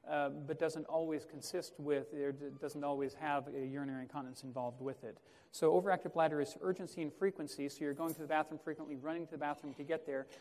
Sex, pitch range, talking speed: male, 140-160 Hz, 200 wpm